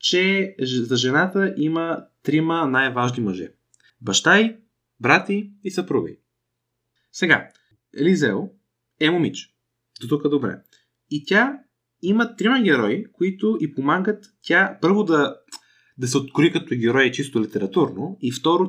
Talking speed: 120 wpm